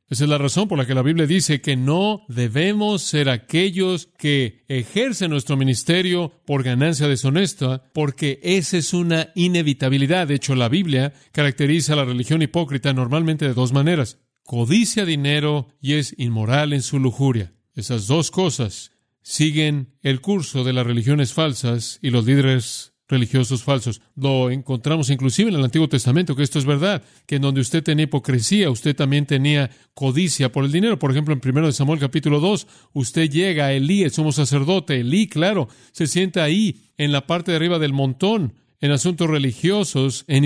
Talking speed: 175 wpm